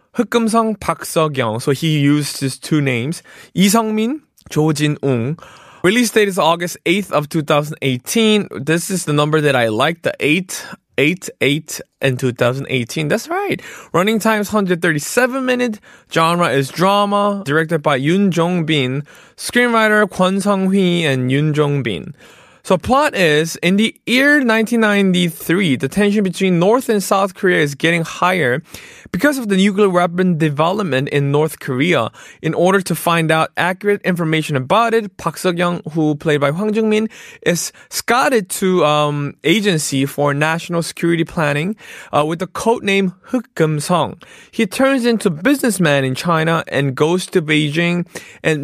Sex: male